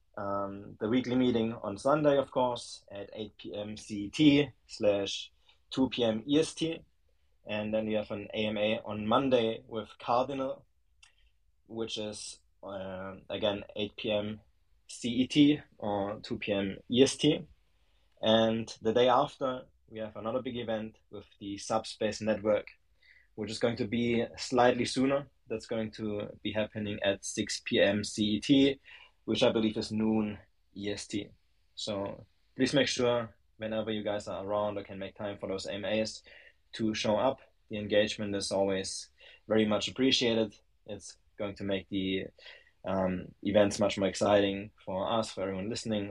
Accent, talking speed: German, 145 wpm